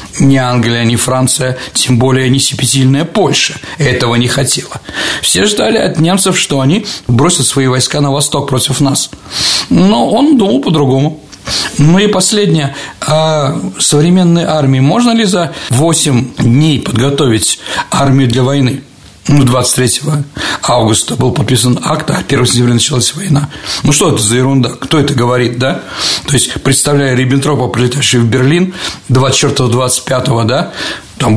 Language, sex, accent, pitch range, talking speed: Russian, male, native, 125-150 Hz, 145 wpm